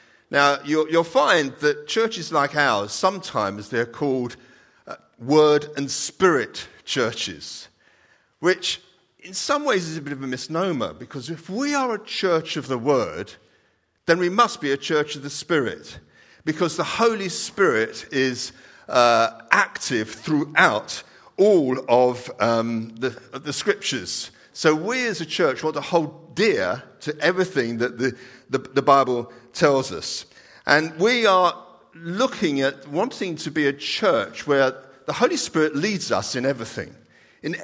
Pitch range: 125-170 Hz